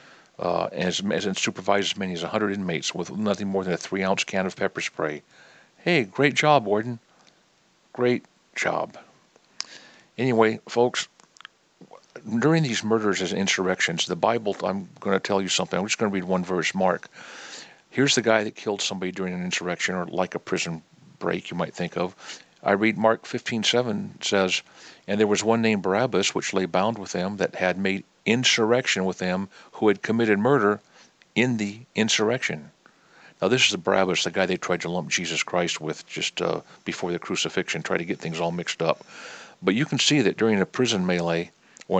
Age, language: 50-69, English